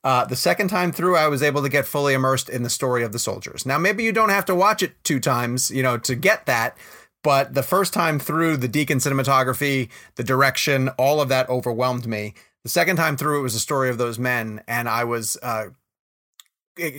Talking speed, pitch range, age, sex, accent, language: 225 wpm, 125-155 Hz, 30-49, male, American, English